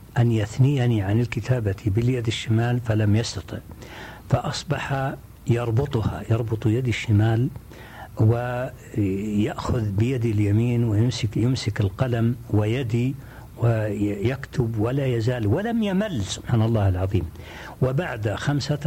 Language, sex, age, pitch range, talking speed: Arabic, male, 60-79, 105-135 Hz, 90 wpm